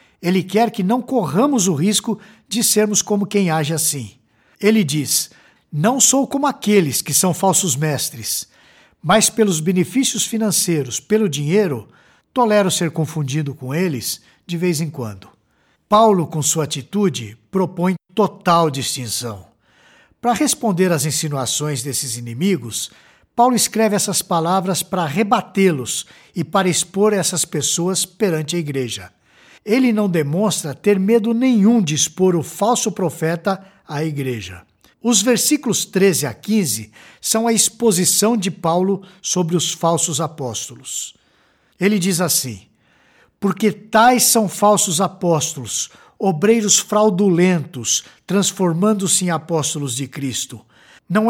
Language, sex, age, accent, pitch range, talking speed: Portuguese, male, 60-79, Brazilian, 150-210 Hz, 125 wpm